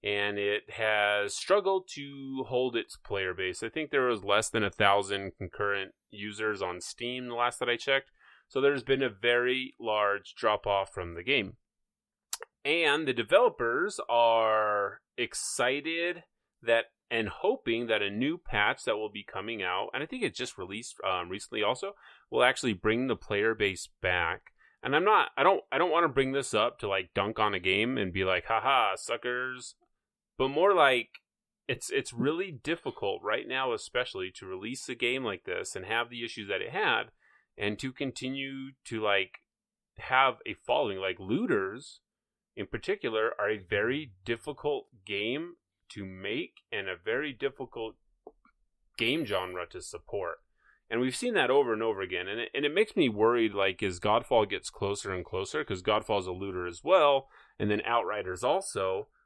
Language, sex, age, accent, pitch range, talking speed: English, male, 30-49, American, 105-145 Hz, 175 wpm